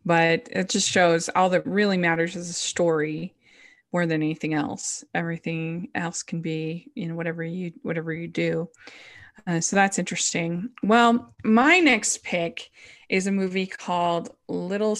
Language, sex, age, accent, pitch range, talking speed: English, female, 20-39, American, 170-215 Hz, 160 wpm